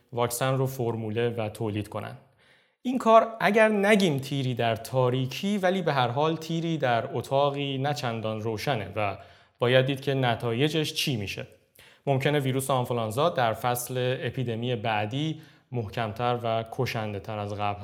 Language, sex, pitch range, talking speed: Persian, male, 115-150 Hz, 140 wpm